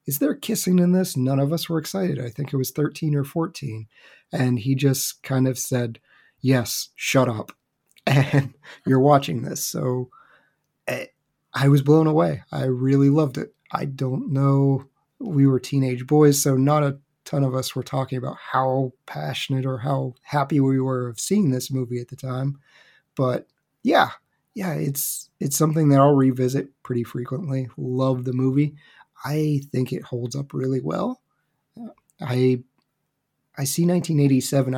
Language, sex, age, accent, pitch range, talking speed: English, male, 30-49, American, 130-150 Hz, 160 wpm